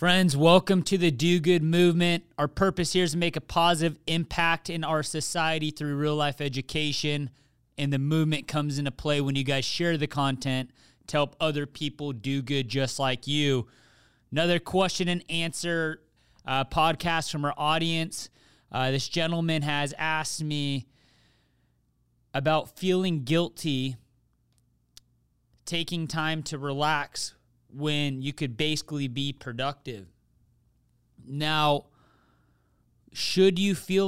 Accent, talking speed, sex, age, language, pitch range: American, 135 wpm, male, 30-49, English, 135-165 Hz